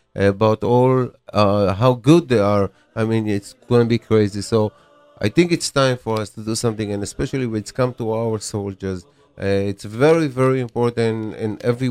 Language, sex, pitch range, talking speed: English, male, 105-130 Hz, 195 wpm